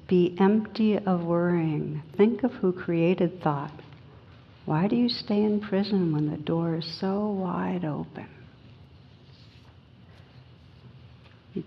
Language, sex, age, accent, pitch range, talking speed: English, female, 60-79, American, 155-185 Hz, 120 wpm